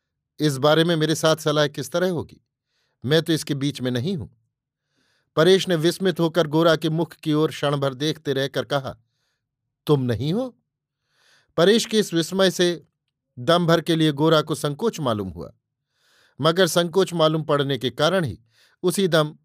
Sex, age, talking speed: male, 50-69, 170 wpm